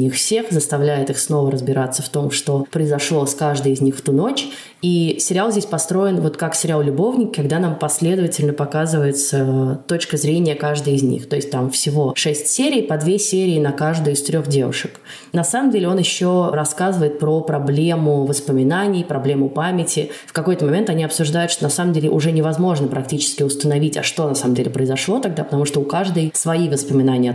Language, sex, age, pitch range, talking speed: Russian, female, 20-39, 140-165 Hz, 185 wpm